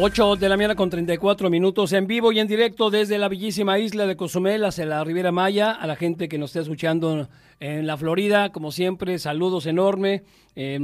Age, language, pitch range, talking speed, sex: 40-59, Spanish, 145-185 Hz, 205 wpm, male